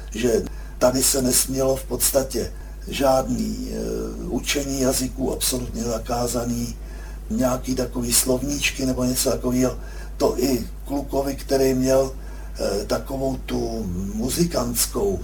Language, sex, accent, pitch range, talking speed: Czech, male, native, 120-135 Hz, 105 wpm